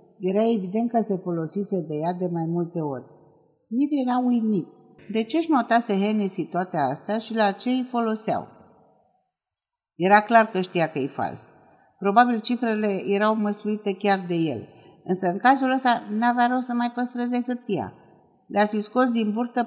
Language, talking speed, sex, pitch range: Romanian, 165 wpm, female, 175-225 Hz